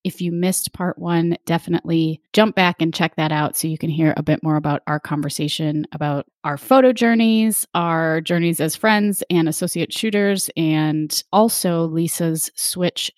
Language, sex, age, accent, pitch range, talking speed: English, female, 30-49, American, 160-205 Hz, 170 wpm